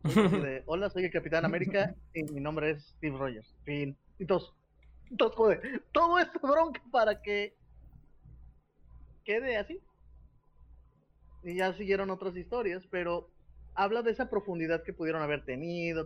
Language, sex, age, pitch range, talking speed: Spanish, male, 30-49, 145-205 Hz, 125 wpm